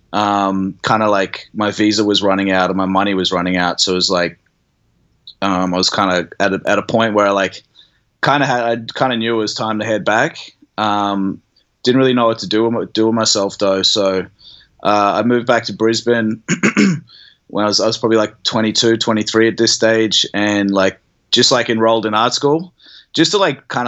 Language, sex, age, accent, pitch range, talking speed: English, male, 20-39, Australian, 105-130 Hz, 220 wpm